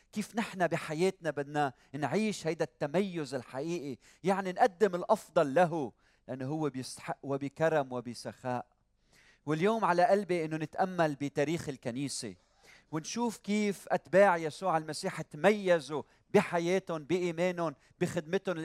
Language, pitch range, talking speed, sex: Arabic, 135-170 Hz, 105 wpm, male